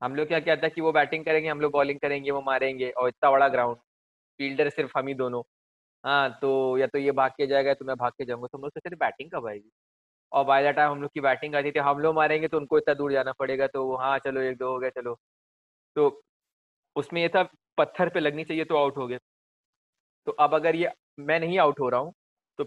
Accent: native